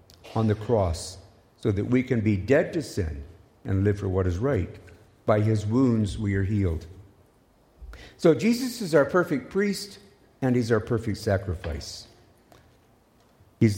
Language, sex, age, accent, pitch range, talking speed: English, male, 60-79, American, 95-140 Hz, 155 wpm